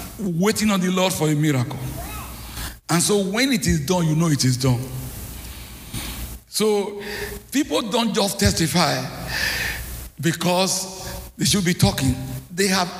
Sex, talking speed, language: male, 140 wpm, English